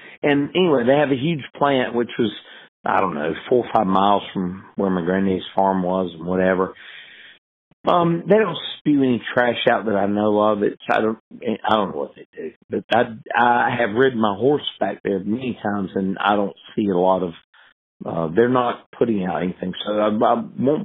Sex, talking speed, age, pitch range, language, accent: male, 205 wpm, 50-69, 95-145 Hz, English, American